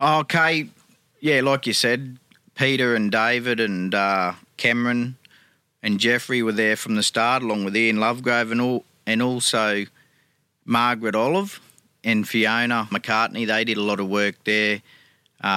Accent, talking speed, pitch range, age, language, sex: Australian, 145 wpm, 105-120 Hz, 40-59, English, male